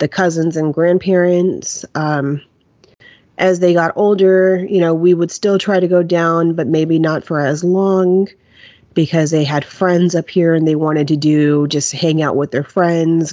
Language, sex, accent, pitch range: English, female, American, 150-185 Hz